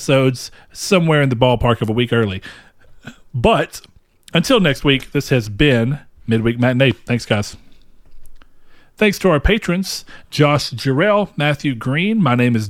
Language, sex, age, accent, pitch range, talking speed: English, male, 40-59, American, 120-160 Hz, 145 wpm